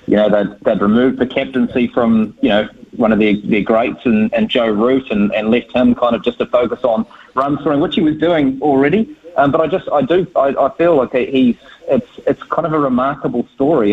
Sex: male